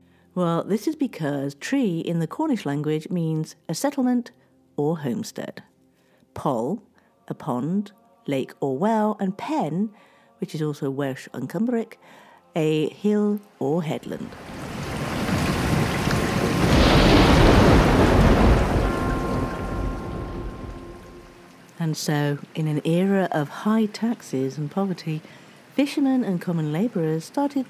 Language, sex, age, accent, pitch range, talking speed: English, female, 50-69, British, 140-210 Hz, 100 wpm